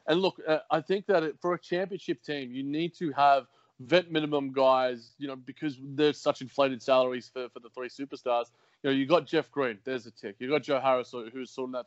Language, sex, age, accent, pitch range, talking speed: English, male, 20-39, Australian, 125-145 Hz, 240 wpm